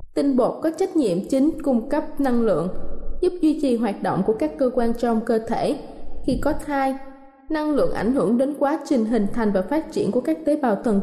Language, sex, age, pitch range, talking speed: Vietnamese, female, 20-39, 235-295 Hz, 230 wpm